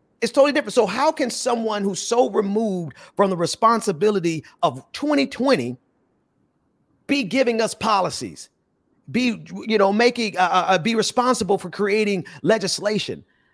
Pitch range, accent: 155-225 Hz, American